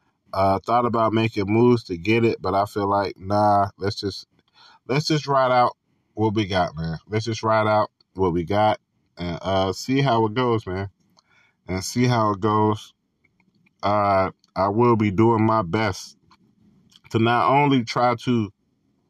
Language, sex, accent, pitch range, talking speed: English, male, American, 95-115 Hz, 175 wpm